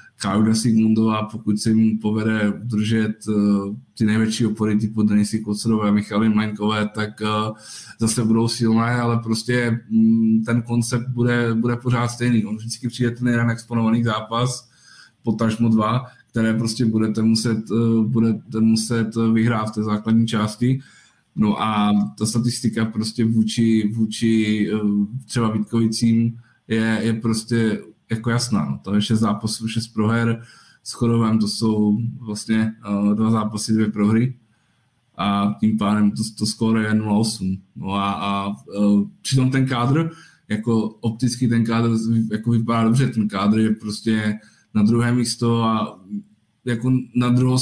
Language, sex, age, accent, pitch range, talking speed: Czech, male, 20-39, native, 105-115 Hz, 140 wpm